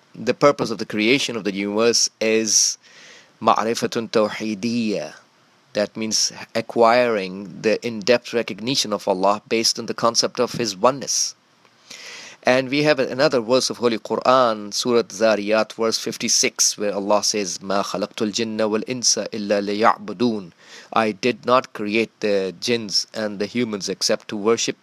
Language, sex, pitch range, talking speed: English, male, 105-125 Hz, 130 wpm